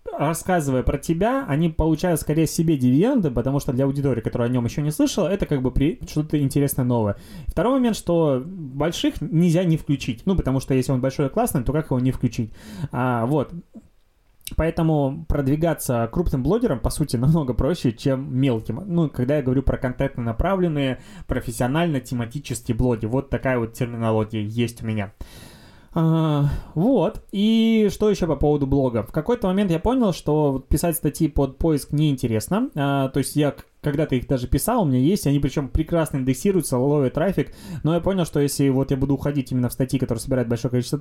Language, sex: Russian, male